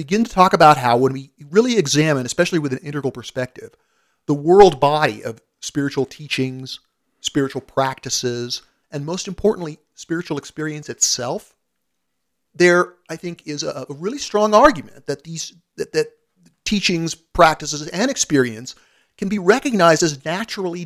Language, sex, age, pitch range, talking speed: English, male, 40-59, 130-170 Hz, 145 wpm